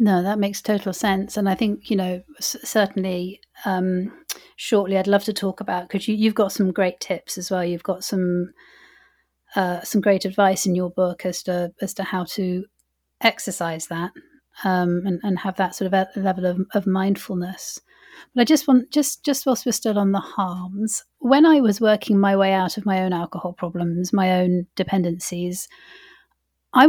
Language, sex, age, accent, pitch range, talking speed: English, female, 40-59, British, 185-210 Hz, 190 wpm